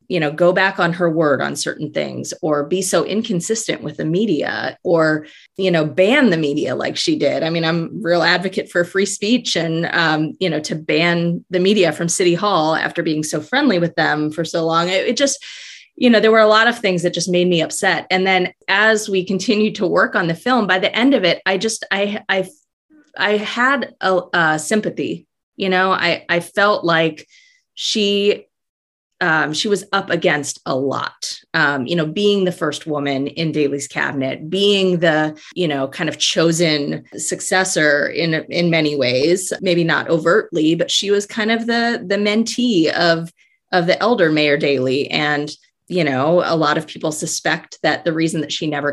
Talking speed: 200 wpm